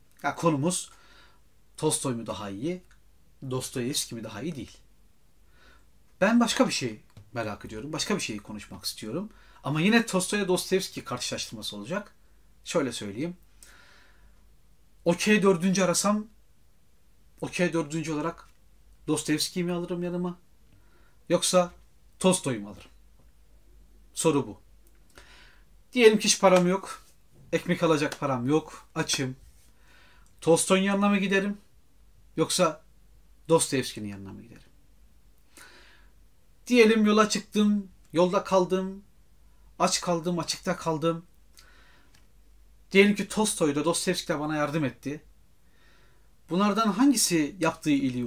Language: Turkish